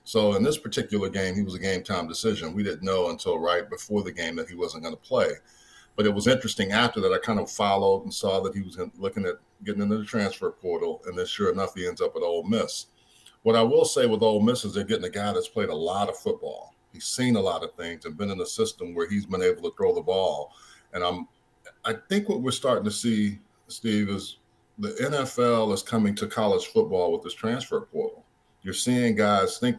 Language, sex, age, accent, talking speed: English, male, 50-69, American, 240 wpm